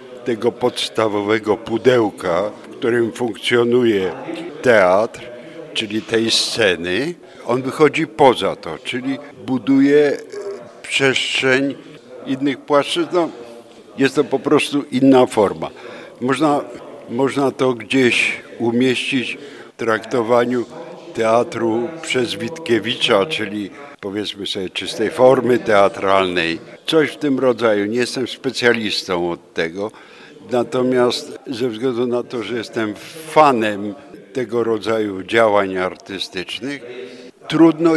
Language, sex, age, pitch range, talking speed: Polish, male, 60-79, 115-140 Hz, 100 wpm